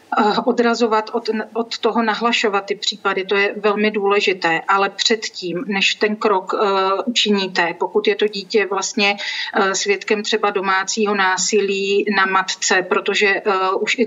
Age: 40-59